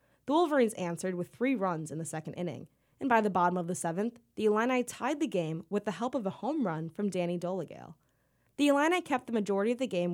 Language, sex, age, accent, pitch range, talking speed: English, female, 20-39, American, 175-220 Hz, 235 wpm